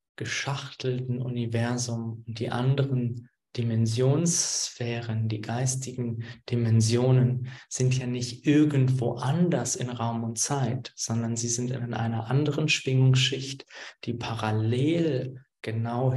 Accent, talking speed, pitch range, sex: German, 105 wpm, 115-130 Hz, male